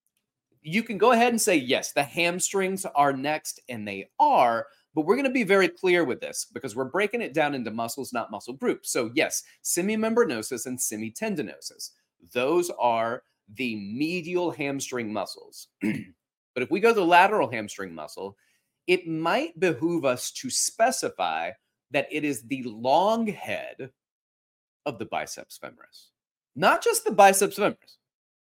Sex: male